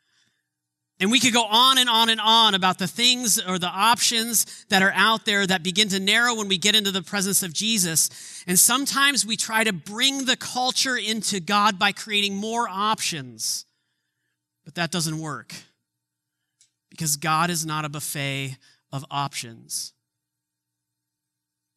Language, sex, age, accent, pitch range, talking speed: English, male, 30-49, American, 155-215 Hz, 155 wpm